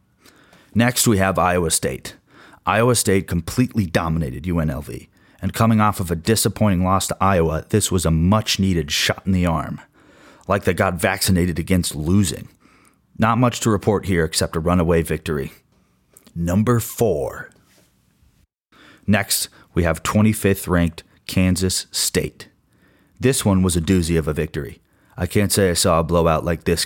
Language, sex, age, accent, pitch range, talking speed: English, male, 30-49, American, 85-100 Hz, 150 wpm